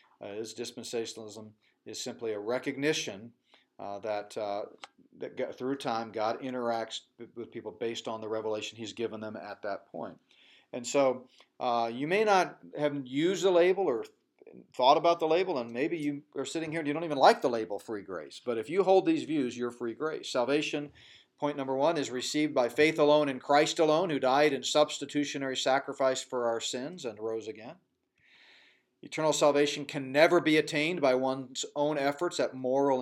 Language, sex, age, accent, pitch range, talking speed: English, male, 40-59, American, 120-150 Hz, 185 wpm